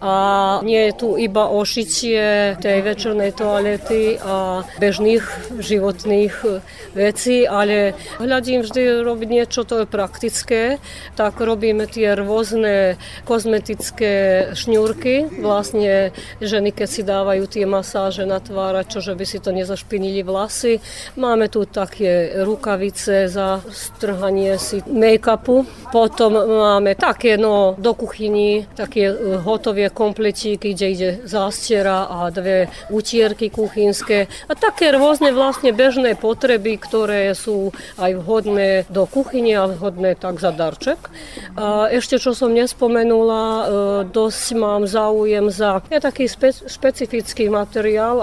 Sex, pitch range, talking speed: female, 200-225 Hz, 120 wpm